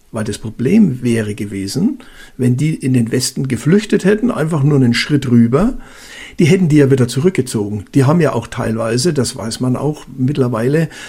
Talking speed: 180 wpm